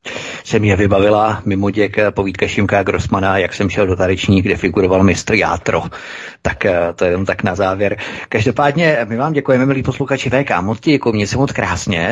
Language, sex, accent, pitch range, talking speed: Czech, male, native, 100-120 Hz, 175 wpm